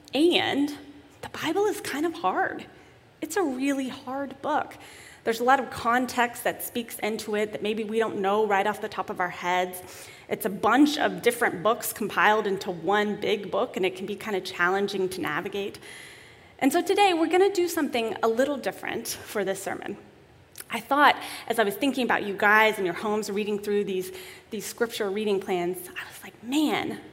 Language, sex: English, female